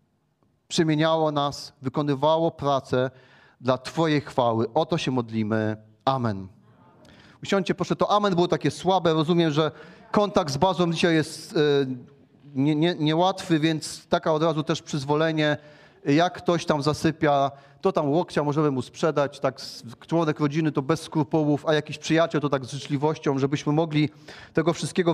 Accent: native